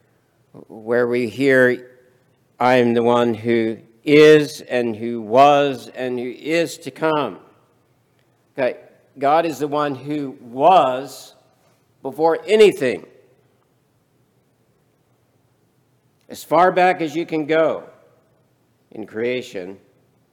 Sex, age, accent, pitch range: male, 60-79, American, 120-145 Hz